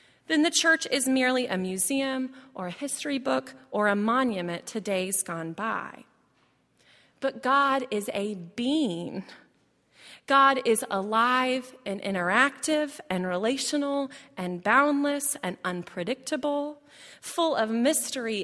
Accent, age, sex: American, 30-49, female